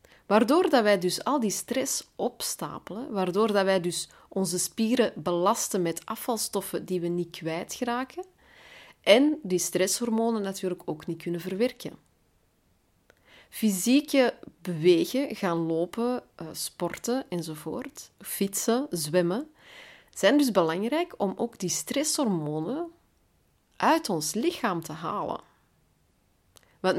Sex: female